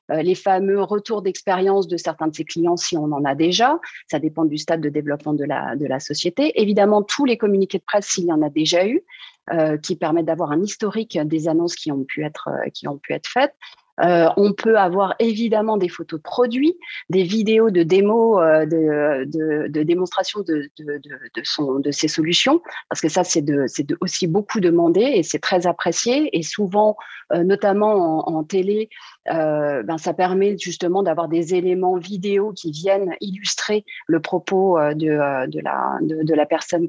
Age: 30-49